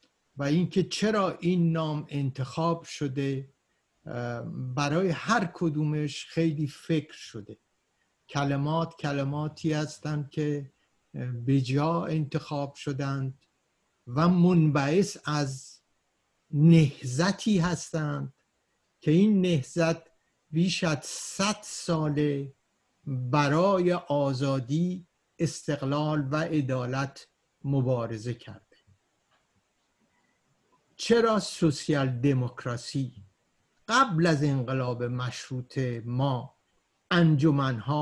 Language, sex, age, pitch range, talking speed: Persian, male, 60-79, 135-165 Hz, 75 wpm